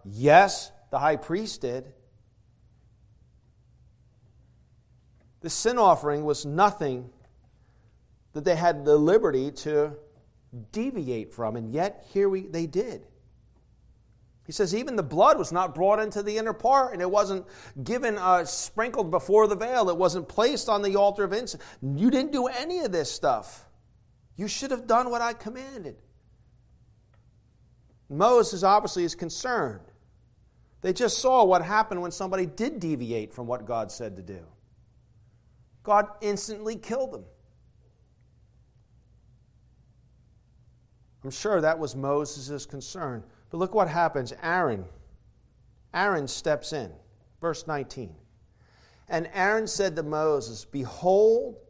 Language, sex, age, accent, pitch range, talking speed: English, male, 40-59, American, 120-200 Hz, 130 wpm